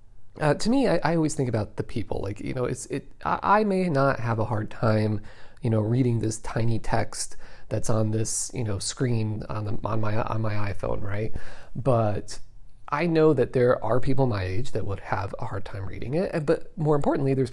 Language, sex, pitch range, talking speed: English, male, 110-140 Hz, 225 wpm